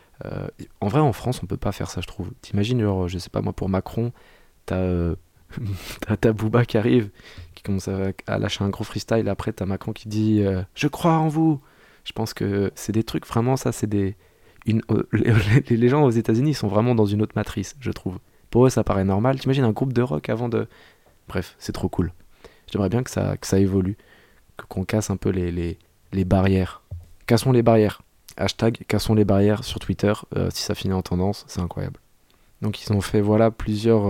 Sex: male